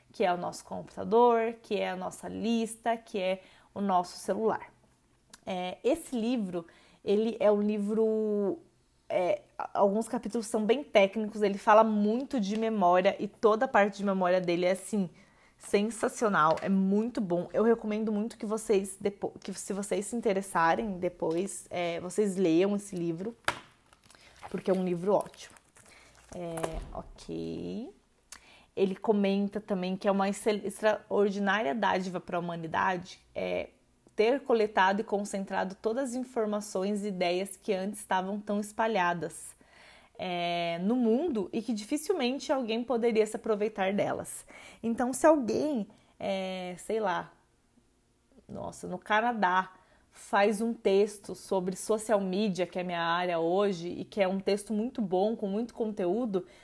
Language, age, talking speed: Portuguese, 20-39, 140 wpm